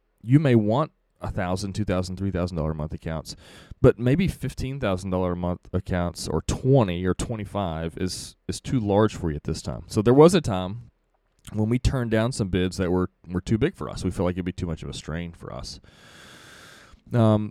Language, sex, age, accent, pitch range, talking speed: English, male, 30-49, American, 85-110 Hz, 225 wpm